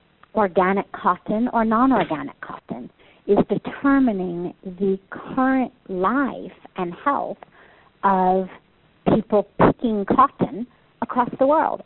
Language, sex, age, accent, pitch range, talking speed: English, female, 50-69, American, 180-225 Hz, 95 wpm